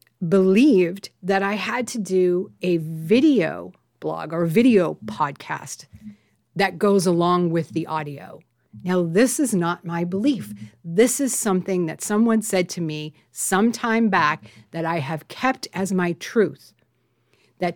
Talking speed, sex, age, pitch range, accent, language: 140 wpm, female, 40-59, 165-205 Hz, American, English